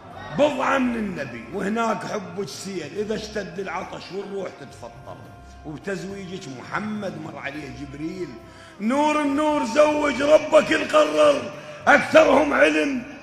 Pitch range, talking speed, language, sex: 215-295 Hz, 105 wpm, Arabic, male